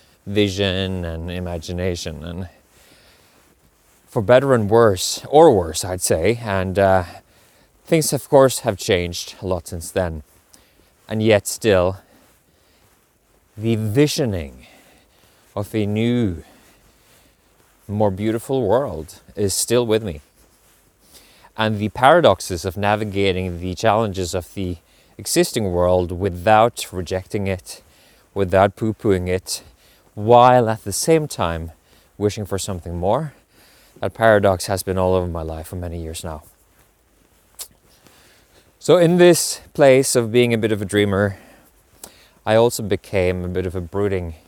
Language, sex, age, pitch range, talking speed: English, male, 20-39, 90-110 Hz, 130 wpm